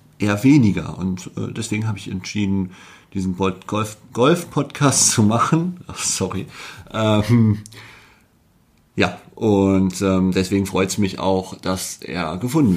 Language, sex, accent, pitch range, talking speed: German, male, German, 100-130 Hz, 125 wpm